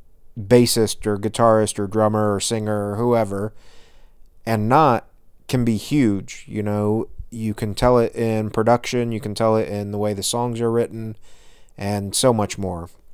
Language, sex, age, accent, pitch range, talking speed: English, male, 30-49, American, 100-120 Hz, 170 wpm